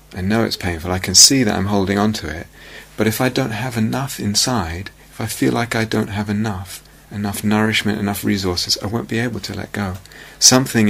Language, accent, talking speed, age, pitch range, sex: English, British, 220 wpm, 30-49, 95-110 Hz, male